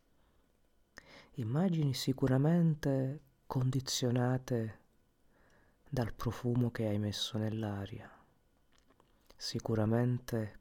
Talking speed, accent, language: 55 wpm, native, Italian